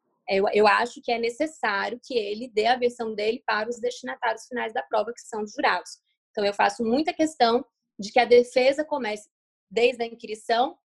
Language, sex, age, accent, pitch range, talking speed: Portuguese, female, 20-39, Brazilian, 225-285 Hz, 195 wpm